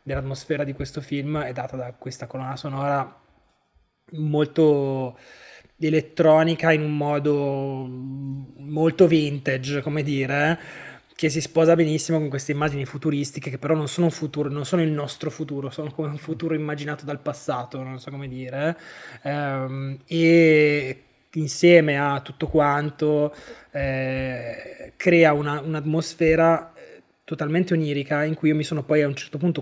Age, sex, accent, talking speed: 20-39, male, native, 140 wpm